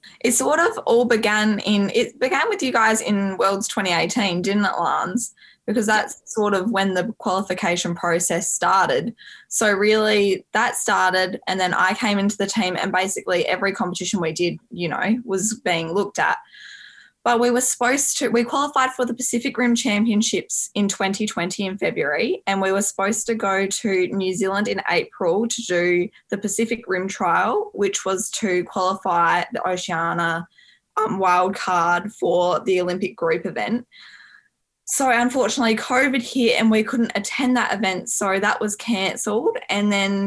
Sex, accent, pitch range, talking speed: female, Australian, 180-225 Hz, 165 wpm